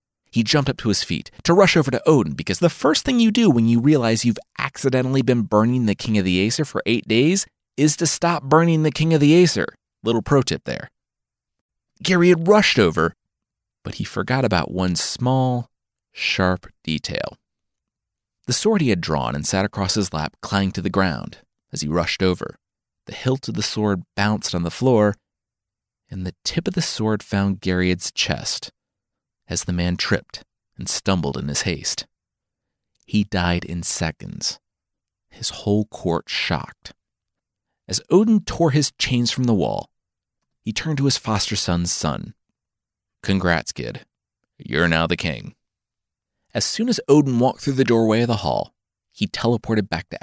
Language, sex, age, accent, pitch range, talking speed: English, male, 30-49, American, 95-140 Hz, 175 wpm